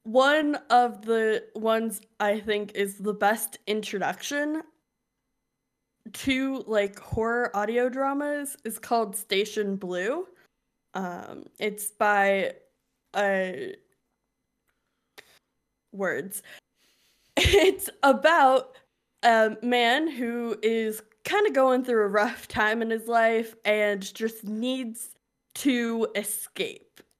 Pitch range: 210-275 Hz